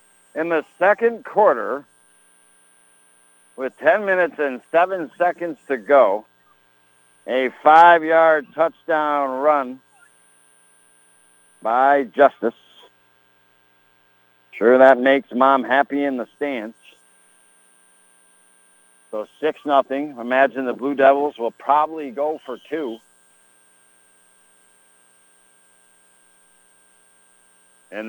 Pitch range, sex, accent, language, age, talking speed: 115-175 Hz, male, American, English, 60-79, 80 wpm